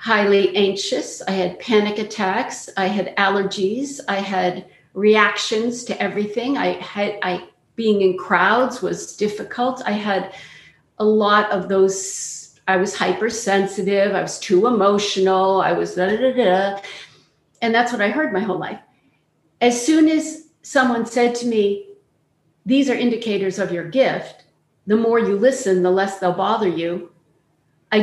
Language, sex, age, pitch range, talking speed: English, female, 50-69, 190-235 Hz, 145 wpm